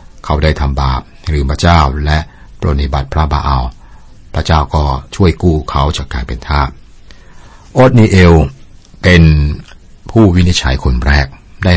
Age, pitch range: 60-79, 70-95 Hz